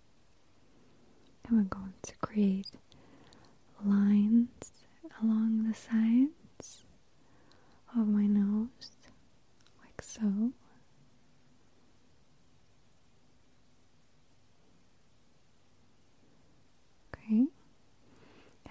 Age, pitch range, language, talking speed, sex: 20-39, 195-230 Hz, English, 45 wpm, female